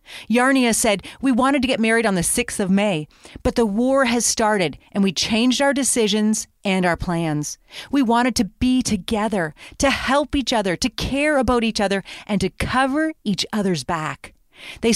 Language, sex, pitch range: English, female, 195-255 Hz